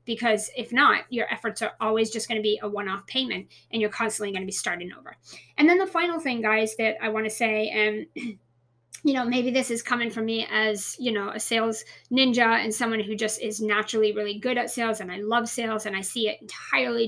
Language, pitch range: English, 215-255 Hz